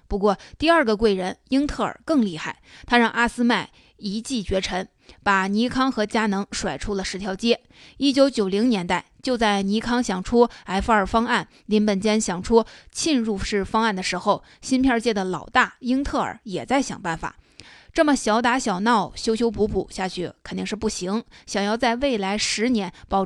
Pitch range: 195-240 Hz